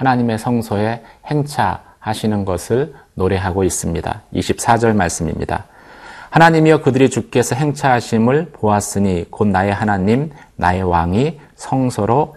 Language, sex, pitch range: Korean, male, 105-140 Hz